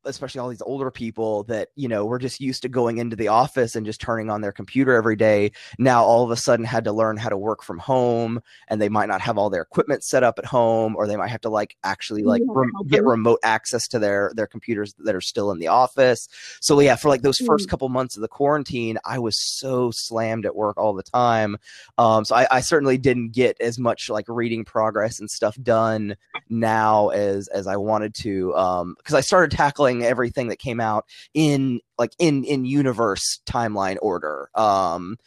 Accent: American